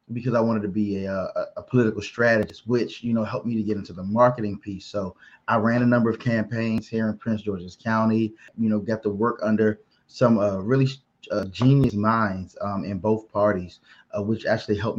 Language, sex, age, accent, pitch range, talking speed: English, male, 20-39, American, 105-120 Hz, 210 wpm